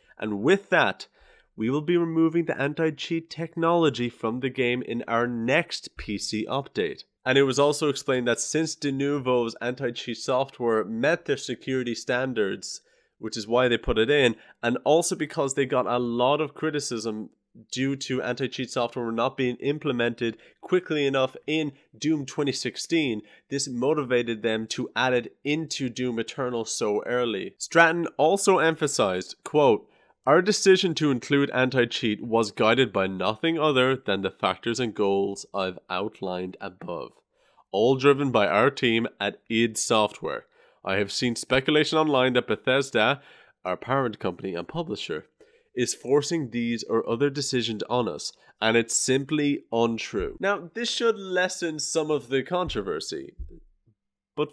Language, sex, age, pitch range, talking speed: English, male, 30-49, 115-155 Hz, 145 wpm